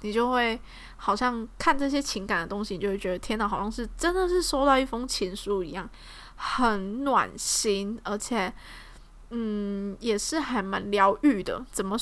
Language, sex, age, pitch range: Chinese, female, 20-39, 200-245 Hz